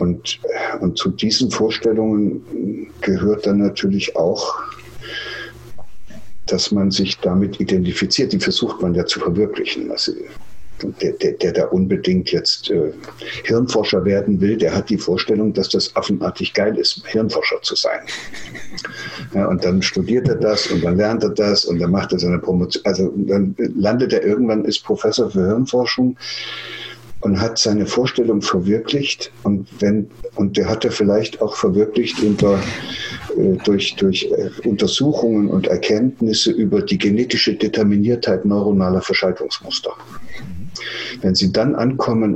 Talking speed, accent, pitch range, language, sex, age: 135 wpm, German, 95-120 Hz, German, male, 60-79